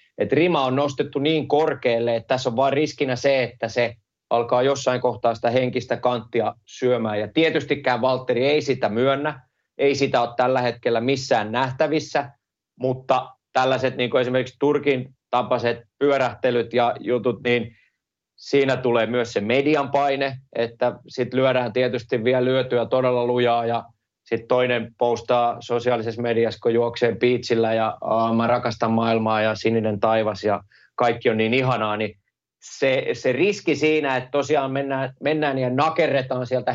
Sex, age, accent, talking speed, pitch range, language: male, 30-49, native, 150 wpm, 115-135 Hz, Finnish